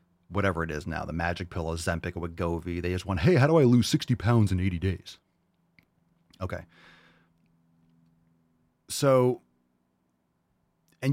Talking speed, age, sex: 145 wpm, 30-49, male